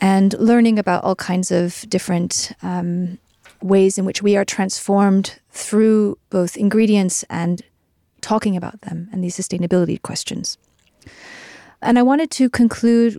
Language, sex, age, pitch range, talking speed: Danish, female, 30-49, 175-220 Hz, 135 wpm